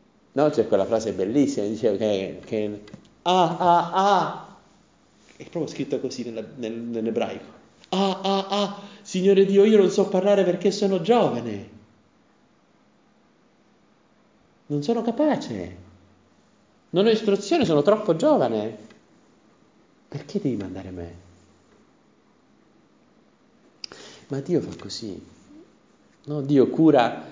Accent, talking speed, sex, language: native, 110 wpm, male, Italian